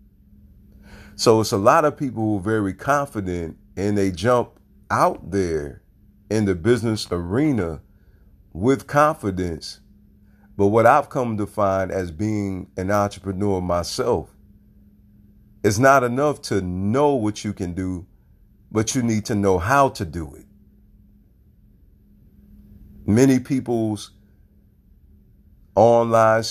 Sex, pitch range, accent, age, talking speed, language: male, 95-115 Hz, American, 40-59, 120 wpm, English